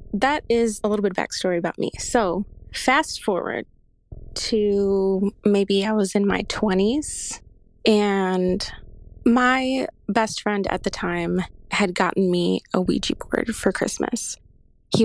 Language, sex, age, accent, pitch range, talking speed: English, female, 20-39, American, 185-225 Hz, 135 wpm